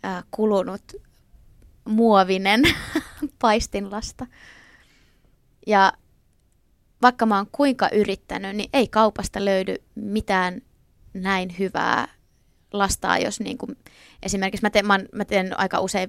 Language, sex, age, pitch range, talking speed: Finnish, female, 20-39, 190-230 Hz, 90 wpm